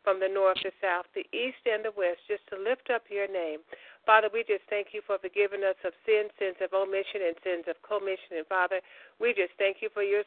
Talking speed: 240 wpm